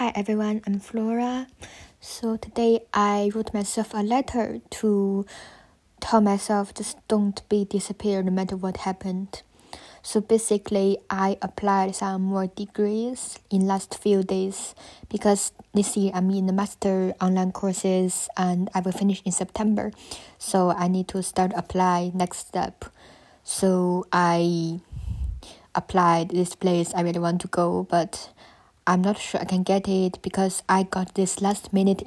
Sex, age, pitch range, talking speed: female, 20-39, 180-205 Hz, 150 wpm